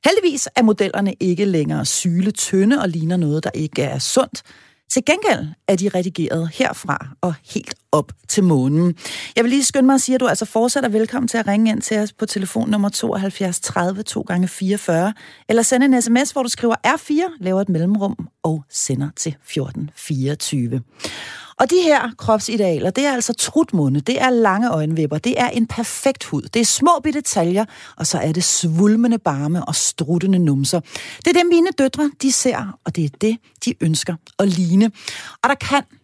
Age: 40-59